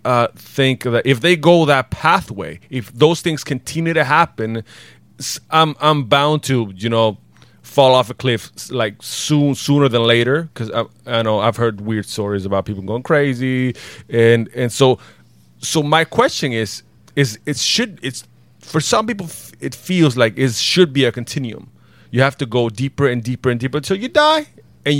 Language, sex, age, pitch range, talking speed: English, male, 30-49, 115-145 Hz, 185 wpm